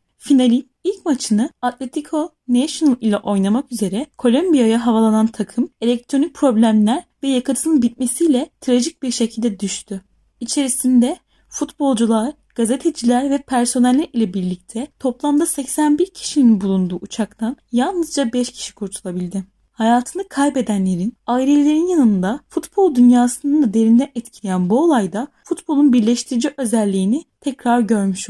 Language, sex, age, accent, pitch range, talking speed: Turkish, female, 10-29, native, 220-285 Hz, 110 wpm